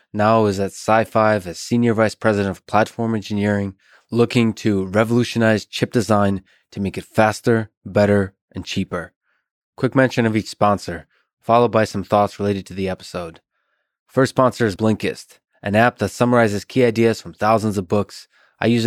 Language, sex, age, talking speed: English, male, 20-39, 165 wpm